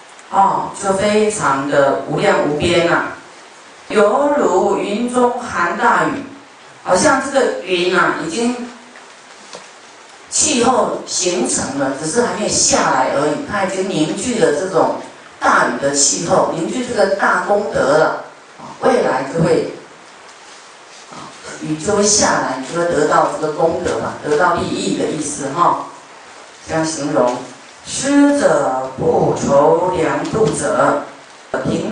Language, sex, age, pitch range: Chinese, female, 30-49, 160-220 Hz